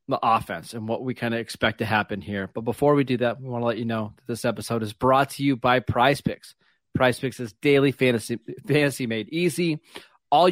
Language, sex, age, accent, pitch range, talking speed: English, male, 30-49, American, 115-140 Hz, 235 wpm